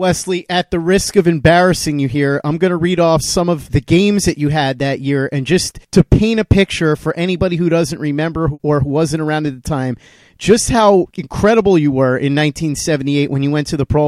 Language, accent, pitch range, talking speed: English, American, 150-190 Hz, 220 wpm